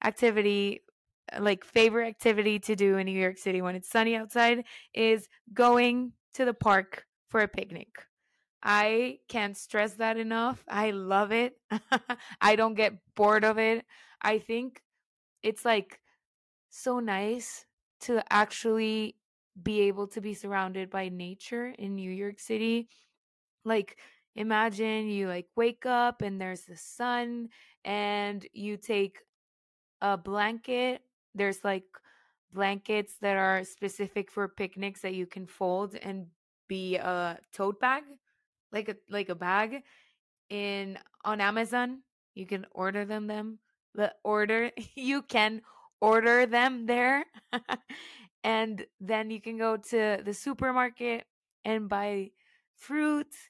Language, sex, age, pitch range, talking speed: Spanish, female, 20-39, 200-235 Hz, 130 wpm